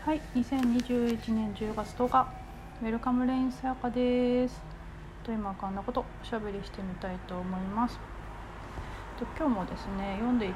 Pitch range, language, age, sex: 180-235 Hz, Japanese, 40-59, female